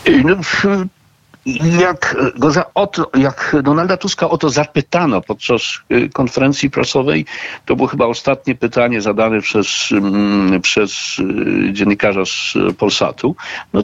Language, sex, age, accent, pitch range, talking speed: Polish, male, 60-79, native, 105-170 Hz, 120 wpm